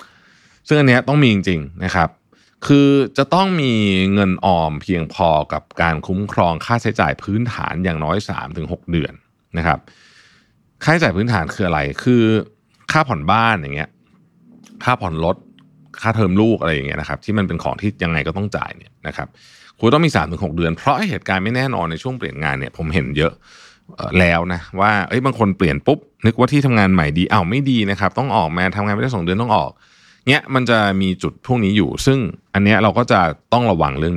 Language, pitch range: Thai, 90-125 Hz